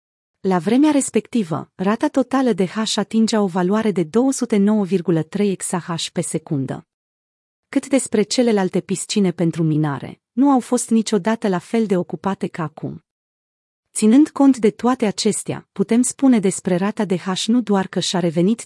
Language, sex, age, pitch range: Romanian, female, 30-49, 175-225 Hz